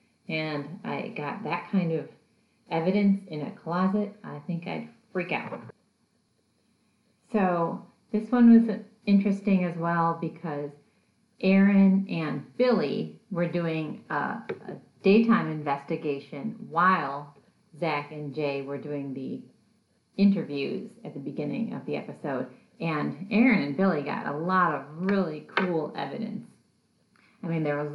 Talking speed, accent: 130 wpm, American